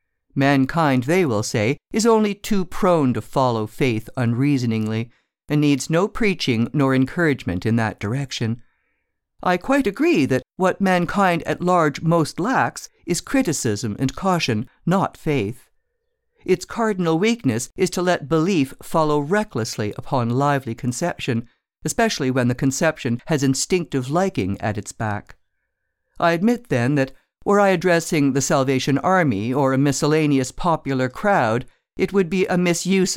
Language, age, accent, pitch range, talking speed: English, 50-69, American, 125-180 Hz, 145 wpm